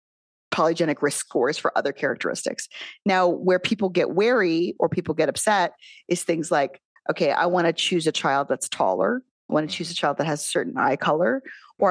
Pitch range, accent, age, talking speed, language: 160-215 Hz, American, 30-49, 200 wpm, English